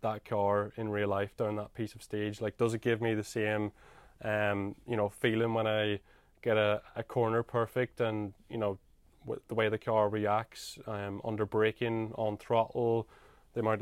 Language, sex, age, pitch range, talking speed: English, male, 20-39, 105-115 Hz, 190 wpm